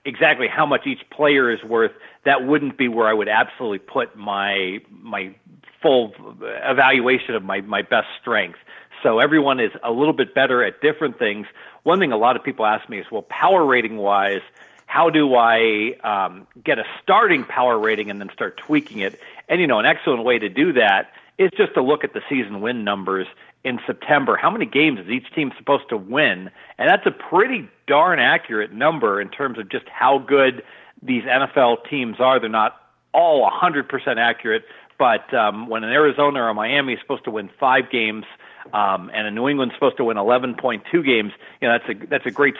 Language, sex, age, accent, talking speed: English, male, 40-59, American, 195 wpm